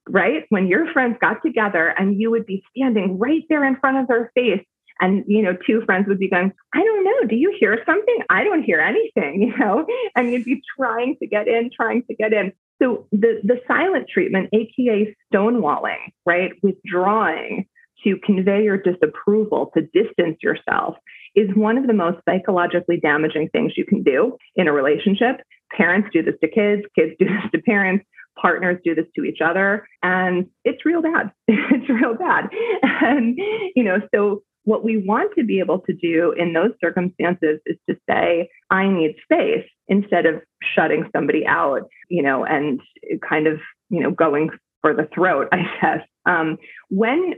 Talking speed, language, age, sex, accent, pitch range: 180 wpm, English, 30-49, female, American, 180-245 Hz